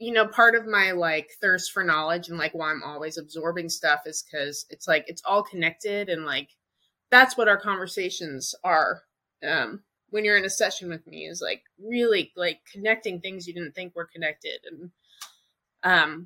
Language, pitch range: English, 170-220 Hz